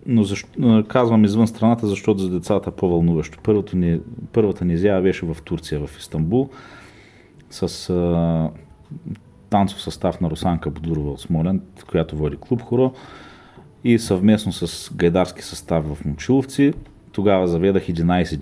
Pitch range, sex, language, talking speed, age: 85-105 Hz, male, Bulgarian, 135 wpm, 40-59